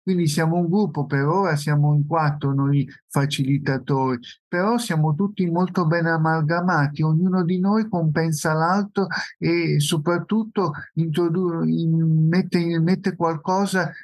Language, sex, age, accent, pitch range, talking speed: Italian, male, 50-69, native, 145-170 Hz, 115 wpm